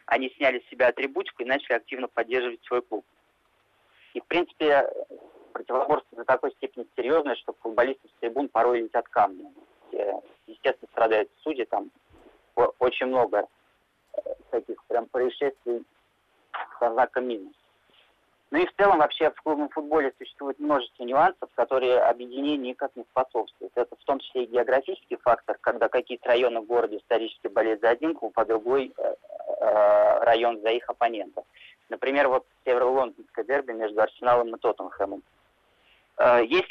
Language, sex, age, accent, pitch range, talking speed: Russian, male, 30-49, native, 120-190 Hz, 135 wpm